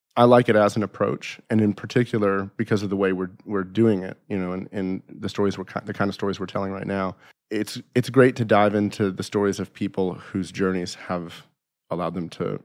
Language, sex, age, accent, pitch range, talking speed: English, male, 30-49, American, 90-105 Hz, 230 wpm